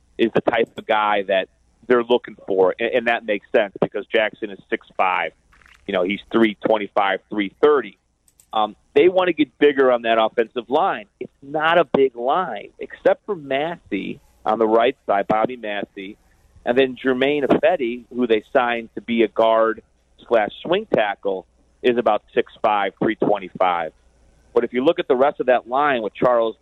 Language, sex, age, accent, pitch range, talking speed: English, male, 40-59, American, 105-135 Hz, 170 wpm